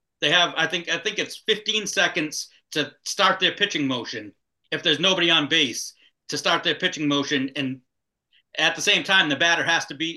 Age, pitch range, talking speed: 40-59, 140-170 Hz, 200 wpm